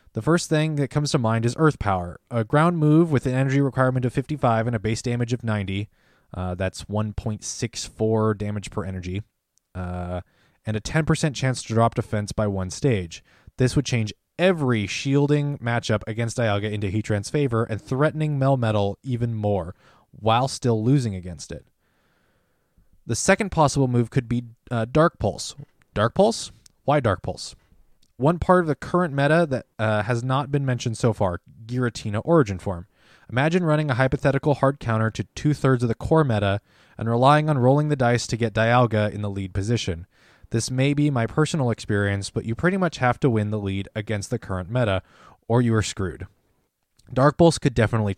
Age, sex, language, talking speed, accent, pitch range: 20-39, male, English, 180 wpm, American, 105-140 Hz